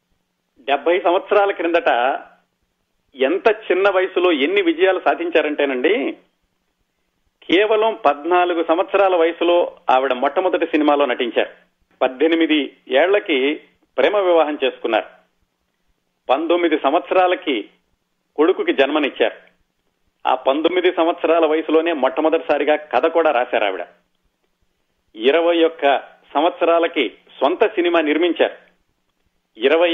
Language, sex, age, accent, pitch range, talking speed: Telugu, male, 40-59, native, 145-180 Hz, 80 wpm